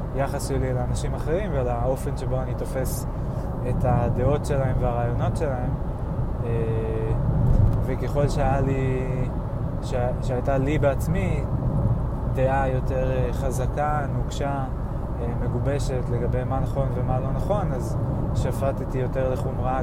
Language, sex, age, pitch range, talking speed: Hebrew, male, 20-39, 120-135 Hz, 105 wpm